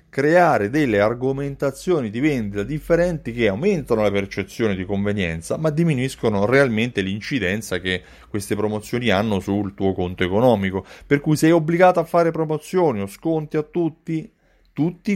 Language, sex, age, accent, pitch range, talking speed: Italian, male, 30-49, native, 105-145 Hz, 145 wpm